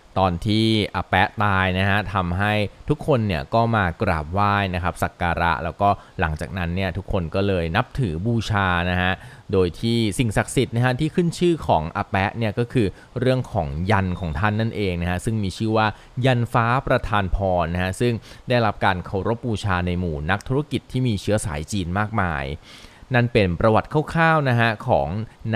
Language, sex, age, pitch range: Thai, male, 20-39, 90-115 Hz